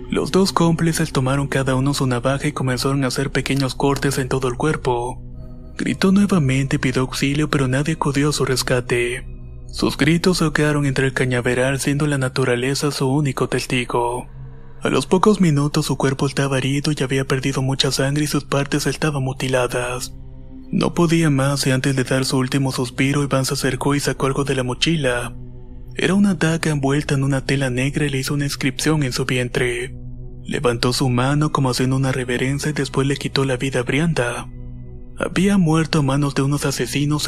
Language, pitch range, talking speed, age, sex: Spanish, 125-145 Hz, 185 wpm, 30-49, male